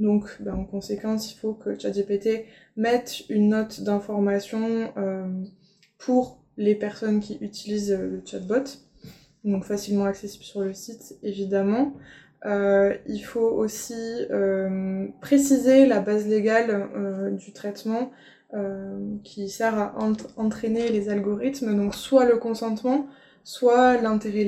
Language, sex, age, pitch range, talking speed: French, female, 20-39, 200-230 Hz, 130 wpm